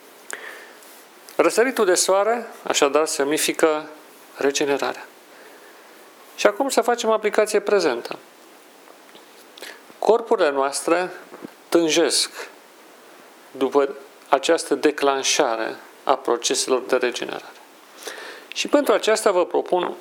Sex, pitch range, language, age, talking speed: male, 135-210 Hz, Romanian, 40-59, 80 wpm